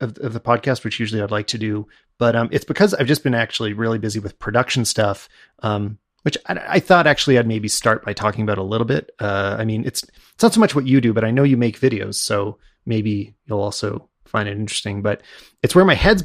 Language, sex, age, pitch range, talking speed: English, male, 30-49, 110-135 Hz, 245 wpm